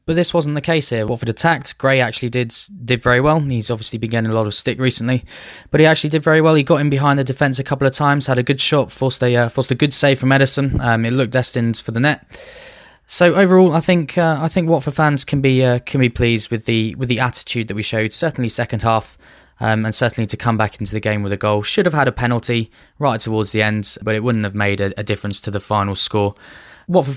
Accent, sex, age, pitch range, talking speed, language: British, male, 10-29, 105-130 Hz, 265 wpm, English